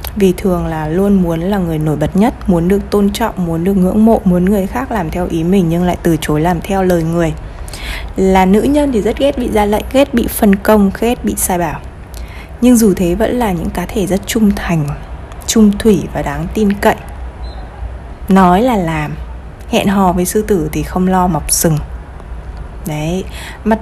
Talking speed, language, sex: 205 wpm, Vietnamese, female